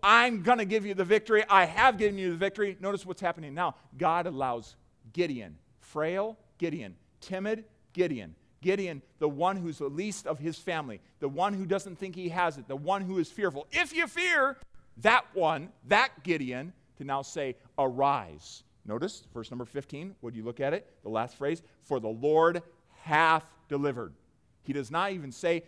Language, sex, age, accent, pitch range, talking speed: English, male, 40-59, American, 135-205 Hz, 185 wpm